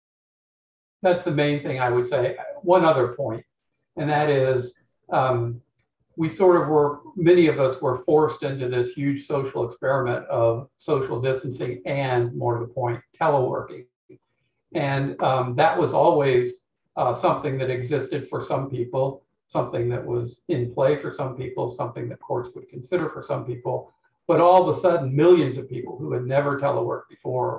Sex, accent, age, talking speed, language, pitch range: male, American, 50-69, 170 wpm, English, 120-155 Hz